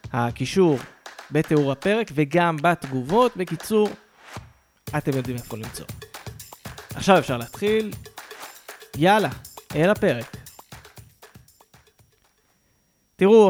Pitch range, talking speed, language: 145-210 Hz, 80 wpm, Hebrew